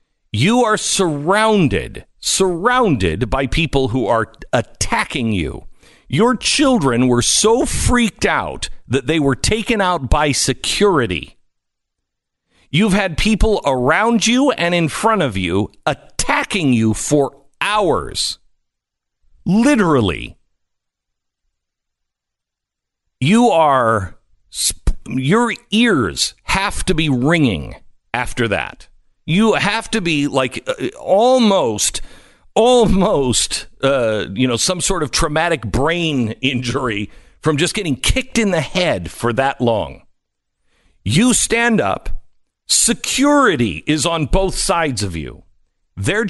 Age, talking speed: 50-69, 110 wpm